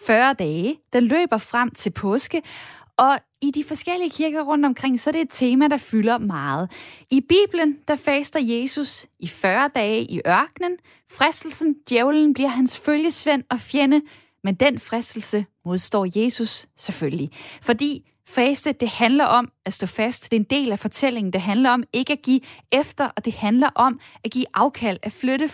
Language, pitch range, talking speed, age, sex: Danish, 225-290 Hz, 175 wpm, 10-29, female